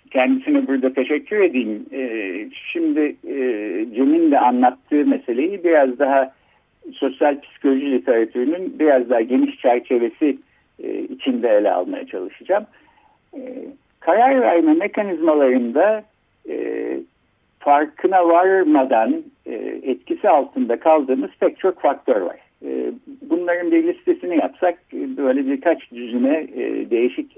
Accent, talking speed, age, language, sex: native, 110 wpm, 60-79, Turkish, male